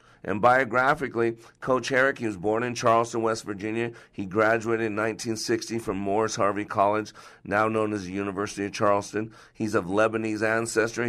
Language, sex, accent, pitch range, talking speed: English, male, American, 95-115 Hz, 160 wpm